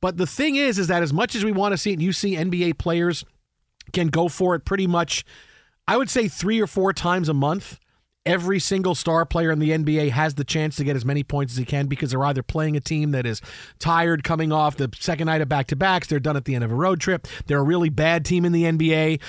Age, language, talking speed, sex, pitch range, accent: 40-59, English, 265 wpm, male, 145-180 Hz, American